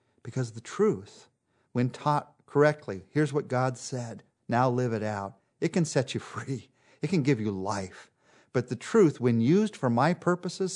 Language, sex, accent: English, male, American